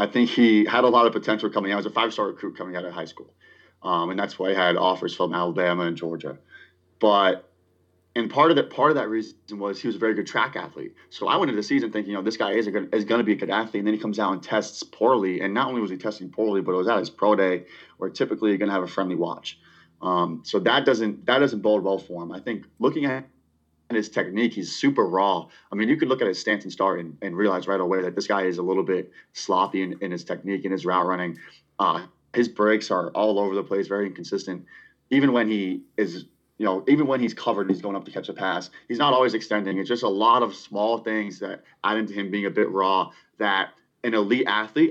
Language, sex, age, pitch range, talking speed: English, male, 30-49, 95-115 Hz, 270 wpm